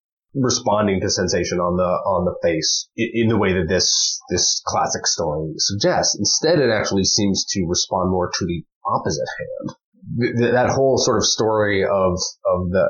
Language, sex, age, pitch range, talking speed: English, male, 30-49, 95-120 Hz, 175 wpm